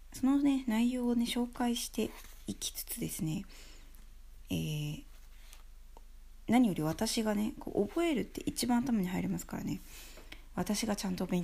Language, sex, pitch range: Japanese, female, 160-245 Hz